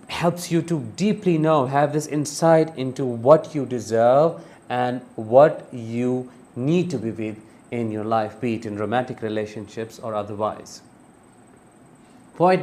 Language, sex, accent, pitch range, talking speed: English, male, Indian, 125-165 Hz, 145 wpm